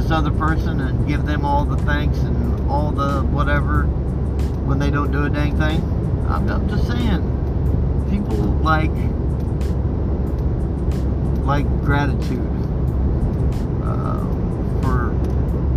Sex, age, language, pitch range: male, 40-59, English, 65-80 Hz